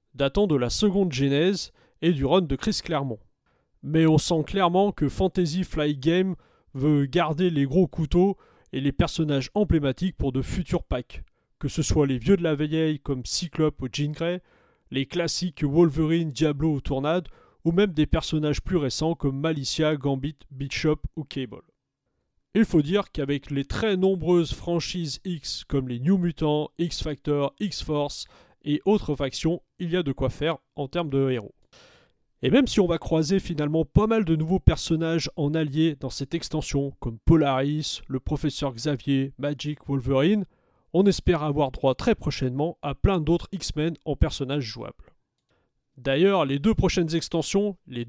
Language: French